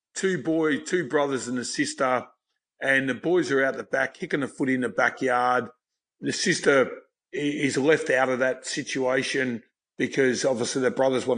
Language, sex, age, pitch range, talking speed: English, male, 50-69, 130-160 Hz, 175 wpm